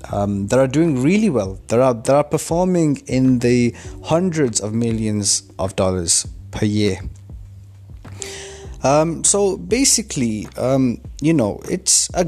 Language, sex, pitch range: English, male, 100-125 Hz